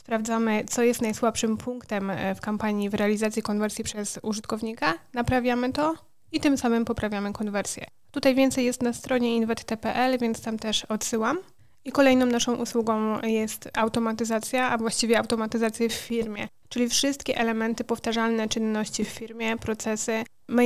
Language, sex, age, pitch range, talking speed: Polish, female, 20-39, 215-240 Hz, 140 wpm